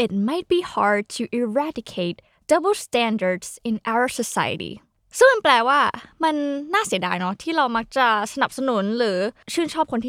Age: 20-39